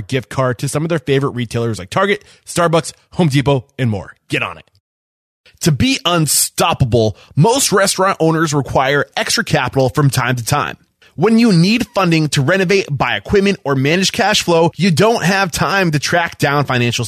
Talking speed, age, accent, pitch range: 180 wpm, 20-39, American, 135-185 Hz